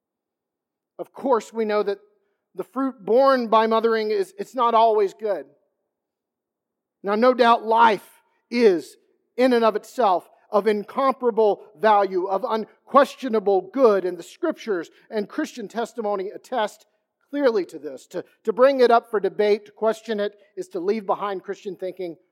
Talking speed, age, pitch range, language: 150 wpm, 40-59, 200-250 Hz, English